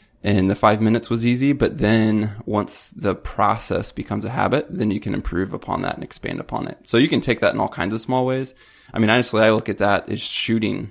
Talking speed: 240 wpm